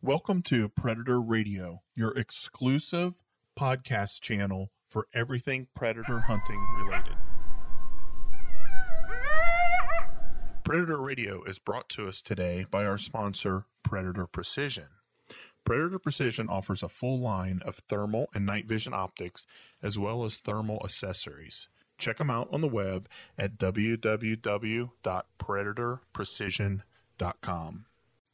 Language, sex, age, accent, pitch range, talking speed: English, male, 40-59, American, 105-135 Hz, 105 wpm